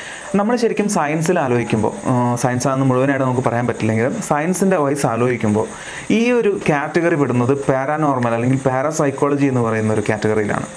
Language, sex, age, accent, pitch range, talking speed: Malayalam, male, 30-49, native, 120-160 Hz, 130 wpm